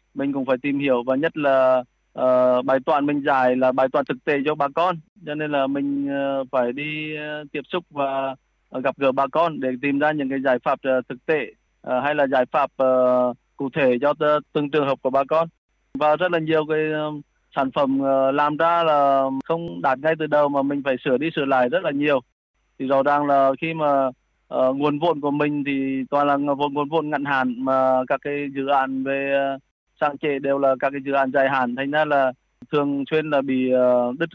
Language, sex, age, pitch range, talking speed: Vietnamese, male, 20-39, 135-150 Hz, 235 wpm